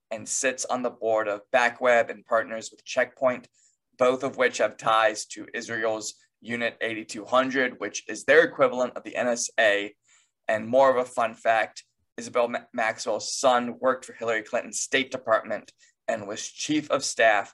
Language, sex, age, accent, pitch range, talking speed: English, male, 20-39, American, 110-130 Hz, 160 wpm